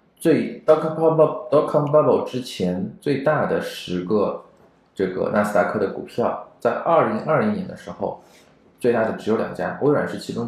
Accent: native